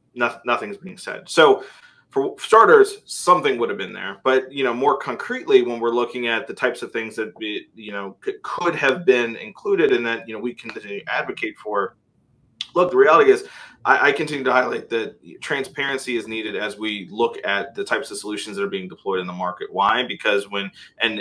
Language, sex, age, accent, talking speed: English, male, 30-49, American, 200 wpm